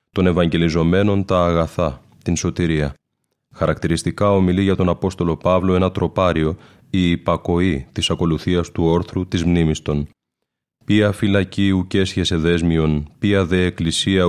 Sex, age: male, 30-49